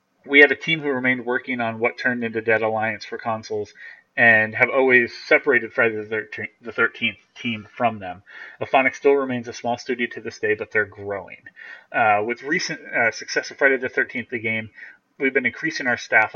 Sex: male